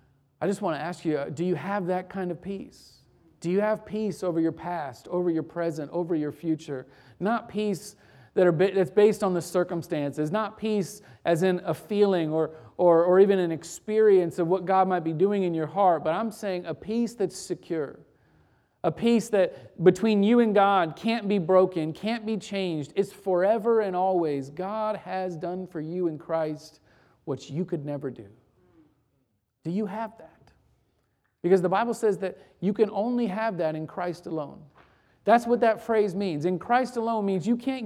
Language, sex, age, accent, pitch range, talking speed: English, male, 40-59, American, 160-215 Hz, 190 wpm